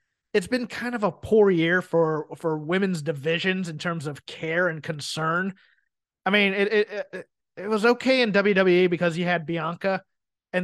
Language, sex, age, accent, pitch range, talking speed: English, male, 30-49, American, 160-185 Hz, 180 wpm